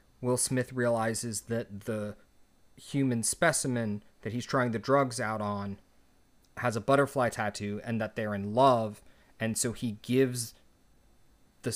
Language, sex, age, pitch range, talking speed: English, male, 30-49, 105-130 Hz, 145 wpm